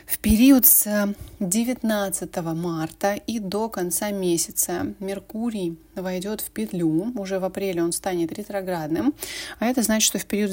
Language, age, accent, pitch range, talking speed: Russian, 20-39, native, 175-215 Hz, 140 wpm